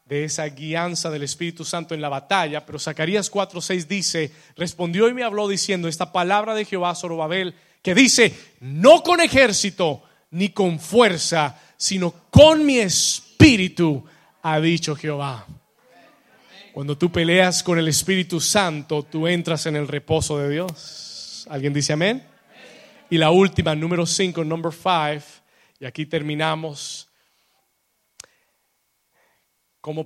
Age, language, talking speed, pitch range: 30-49, Spanish, 130 wpm, 150-185 Hz